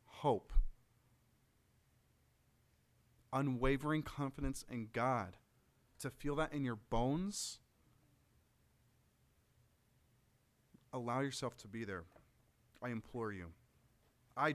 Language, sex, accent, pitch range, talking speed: English, male, American, 120-150 Hz, 85 wpm